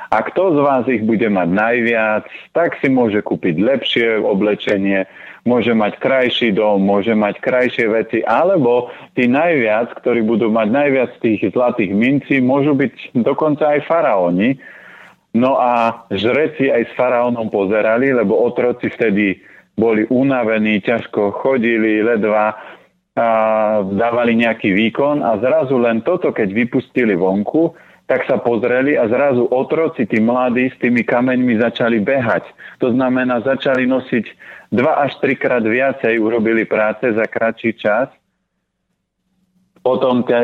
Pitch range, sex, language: 110-130 Hz, male, Slovak